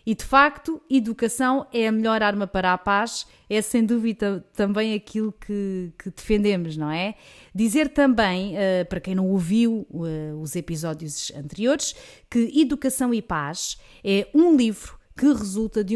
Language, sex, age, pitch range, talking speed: Portuguese, female, 30-49, 185-255 Hz, 150 wpm